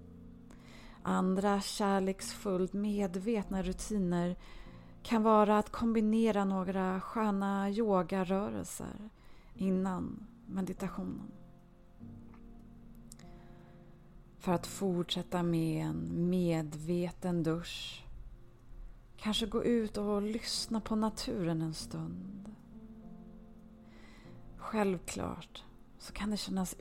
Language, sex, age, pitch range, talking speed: Swedish, female, 30-49, 170-210 Hz, 75 wpm